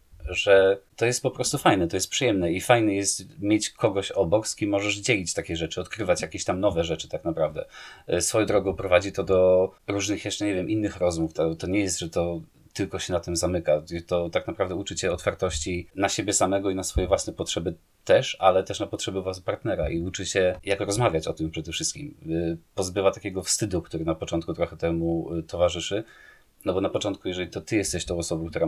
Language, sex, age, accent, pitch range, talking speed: Polish, male, 30-49, native, 85-100 Hz, 210 wpm